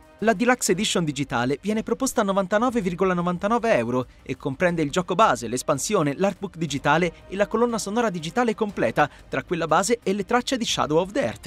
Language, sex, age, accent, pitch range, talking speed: Italian, male, 30-49, native, 145-205 Hz, 175 wpm